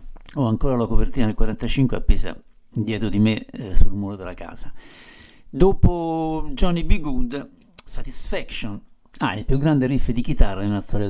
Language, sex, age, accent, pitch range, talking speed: Italian, male, 60-79, native, 105-130 Hz, 160 wpm